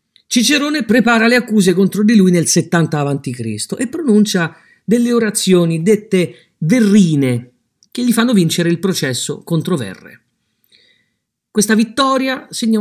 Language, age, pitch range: Italian, 50-69, 160-230 Hz